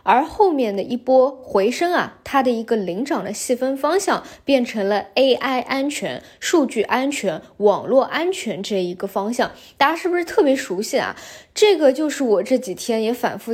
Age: 20-39